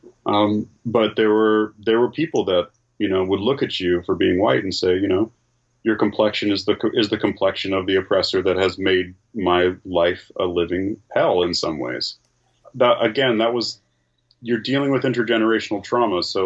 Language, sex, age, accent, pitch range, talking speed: English, male, 30-49, American, 95-115 Hz, 190 wpm